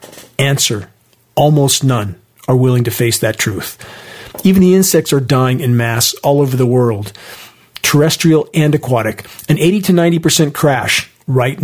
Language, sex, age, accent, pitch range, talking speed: English, male, 40-59, American, 125-155 Hz, 150 wpm